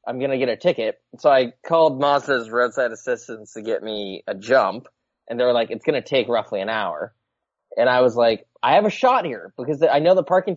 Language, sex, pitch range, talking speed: English, male, 120-160 Hz, 240 wpm